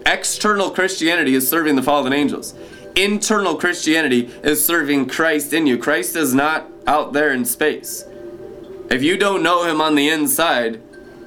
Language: English